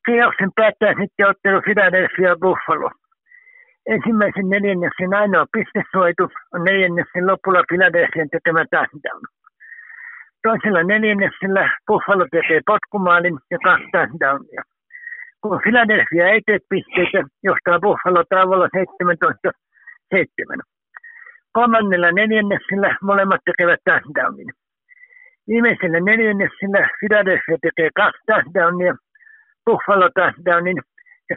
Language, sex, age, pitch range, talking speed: Finnish, male, 60-79, 180-225 Hz, 90 wpm